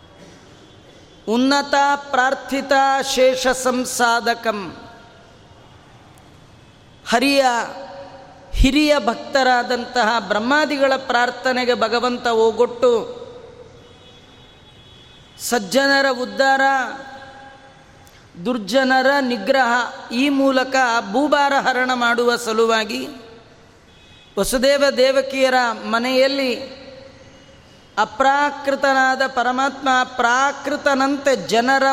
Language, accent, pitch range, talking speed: Kannada, native, 240-275 Hz, 55 wpm